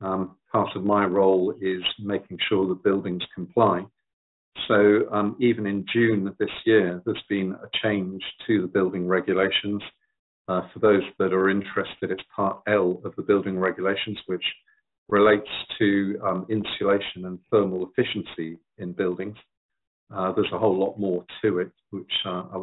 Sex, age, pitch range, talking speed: male, 50-69, 95-105 Hz, 160 wpm